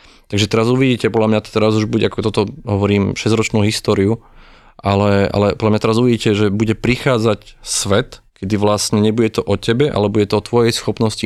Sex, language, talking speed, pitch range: male, Slovak, 190 wpm, 100-115 Hz